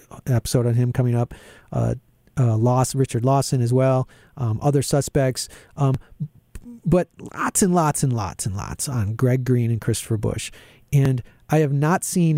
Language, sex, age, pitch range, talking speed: English, male, 40-59, 120-145 Hz, 170 wpm